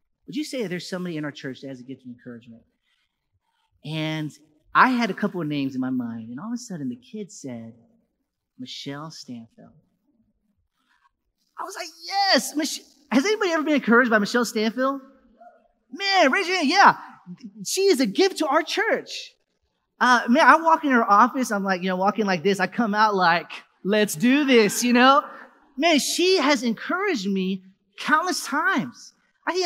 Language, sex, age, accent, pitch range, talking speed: English, male, 30-49, American, 190-280 Hz, 180 wpm